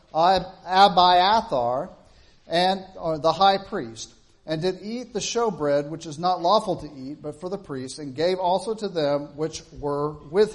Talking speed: 165 wpm